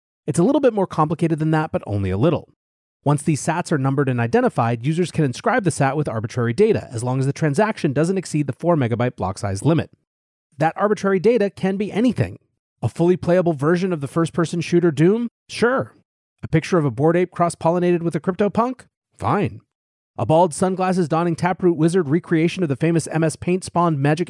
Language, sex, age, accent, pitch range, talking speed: English, male, 30-49, American, 140-180 Hz, 200 wpm